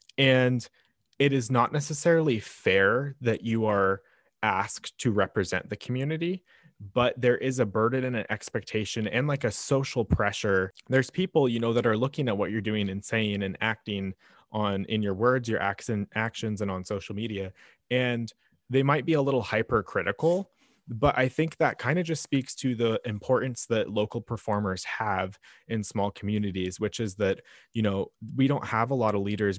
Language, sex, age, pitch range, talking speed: English, male, 20-39, 105-130 Hz, 185 wpm